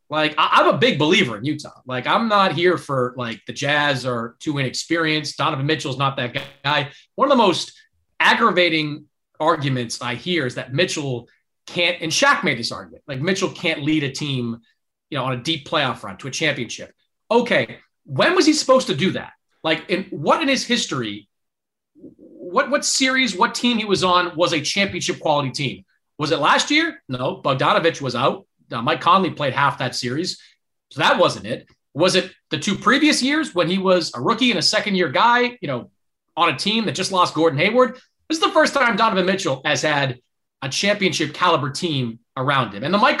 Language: English